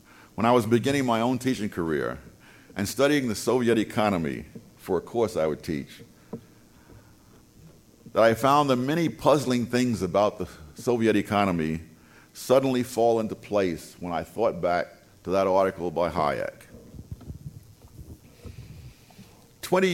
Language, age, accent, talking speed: English, 50-69, American, 130 wpm